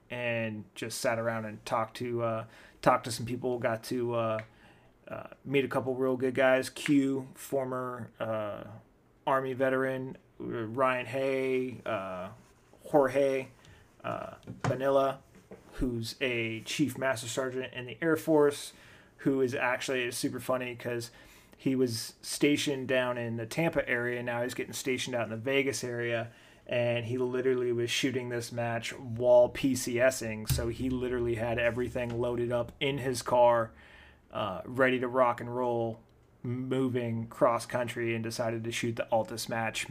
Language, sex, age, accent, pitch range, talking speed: English, male, 30-49, American, 115-130 Hz, 150 wpm